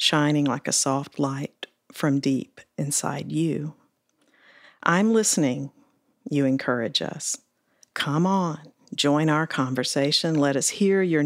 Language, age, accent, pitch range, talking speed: English, 50-69, American, 145-170 Hz, 125 wpm